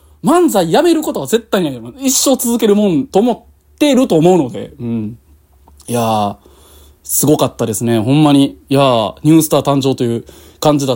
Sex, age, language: male, 20-39, Japanese